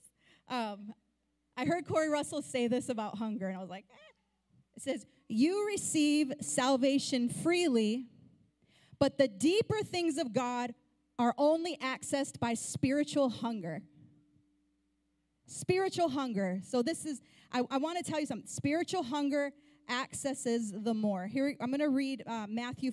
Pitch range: 215-280 Hz